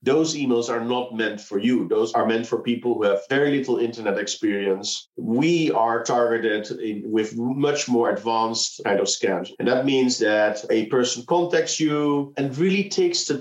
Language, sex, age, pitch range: English, male, 50-69, 115-145 Hz